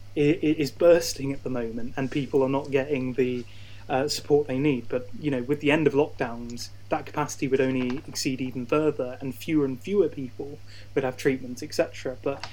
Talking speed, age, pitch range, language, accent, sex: 195 wpm, 20-39, 120-145 Hz, English, British, male